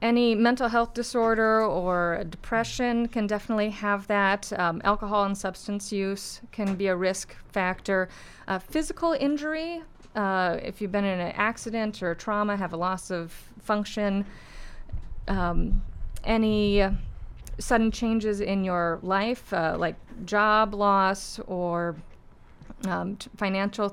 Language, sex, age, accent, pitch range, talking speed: English, female, 30-49, American, 185-215 Hz, 130 wpm